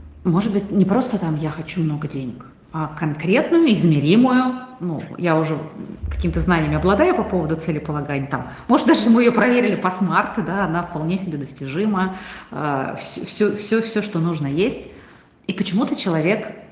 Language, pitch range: Russian, 155-215 Hz